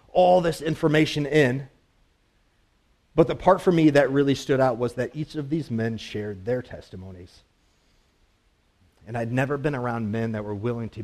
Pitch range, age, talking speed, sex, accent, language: 105-160 Hz, 40-59, 175 wpm, male, American, English